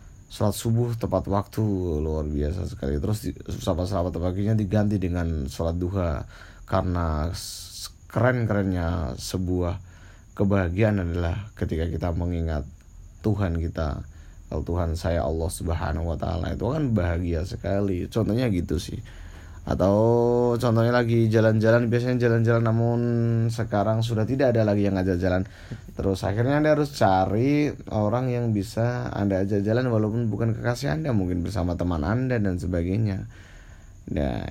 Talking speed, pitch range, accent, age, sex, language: 130 wpm, 90-110 Hz, native, 20-39, male, Indonesian